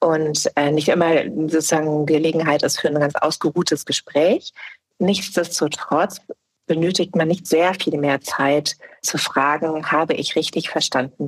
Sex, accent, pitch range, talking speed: female, German, 145-175 Hz, 135 wpm